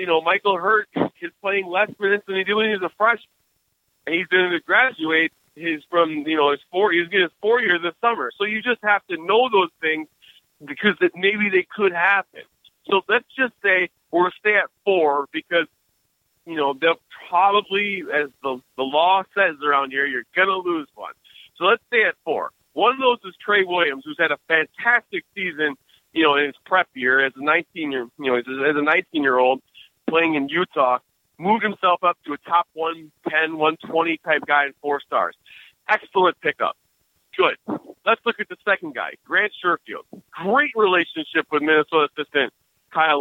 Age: 40-59